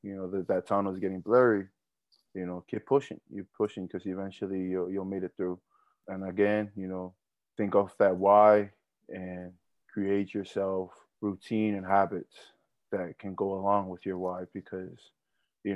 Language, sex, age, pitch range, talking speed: English, male, 20-39, 95-105 Hz, 170 wpm